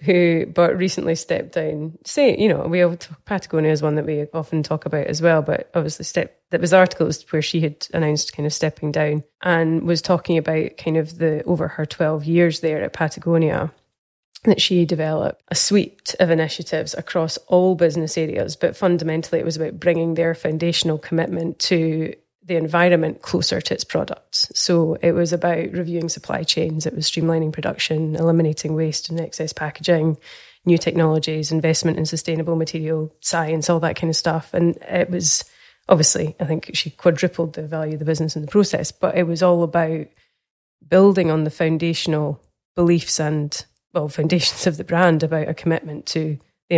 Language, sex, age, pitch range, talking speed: English, female, 20-39, 155-170 Hz, 180 wpm